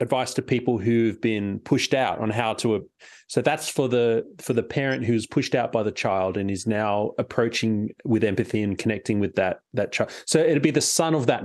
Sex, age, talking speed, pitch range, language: male, 30-49, 220 wpm, 110-145 Hz, English